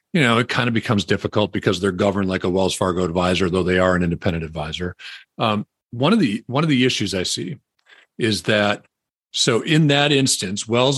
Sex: male